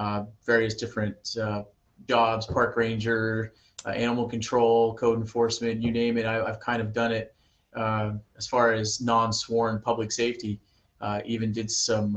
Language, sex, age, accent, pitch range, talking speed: English, male, 30-49, American, 110-115 Hz, 160 wpm